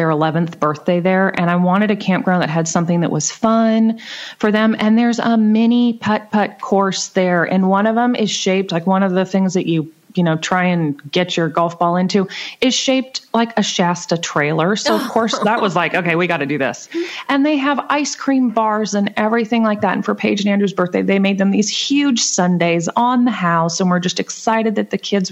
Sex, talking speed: female, 230 wpm